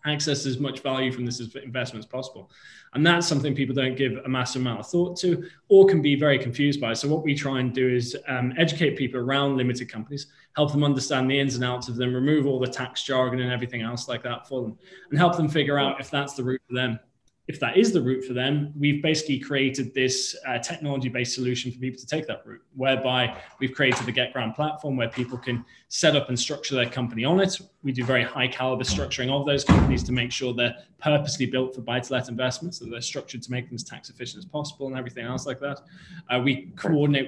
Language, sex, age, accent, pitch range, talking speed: English, male, 20-39, British, 125-145 Hz, 235 wpm